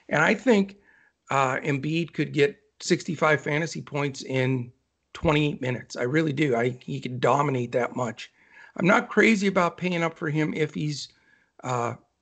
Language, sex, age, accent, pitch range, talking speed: English, male, 50-69, American, 130-175 Hz, 160 wpm